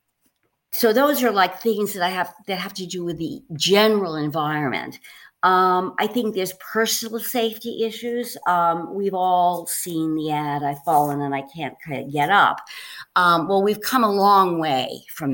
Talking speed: 170 wpm